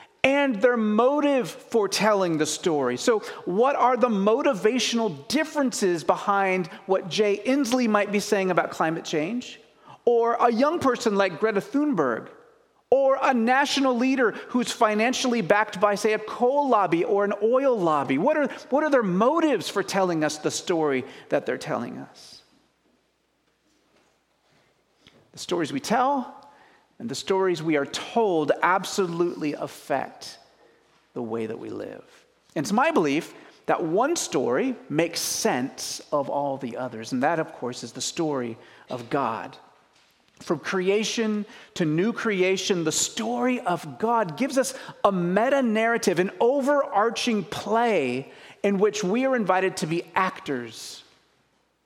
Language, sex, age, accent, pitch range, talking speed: English, male, 40-59, American, 180-255 Hz, 140 wpm